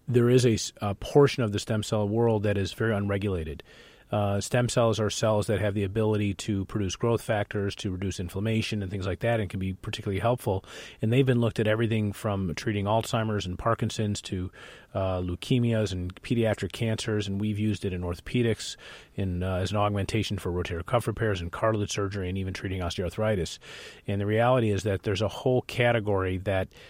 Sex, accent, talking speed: male, American, 195 wpm